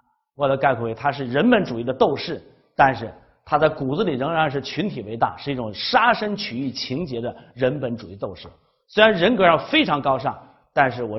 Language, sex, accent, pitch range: Chinese, male, native, 125-195 Hz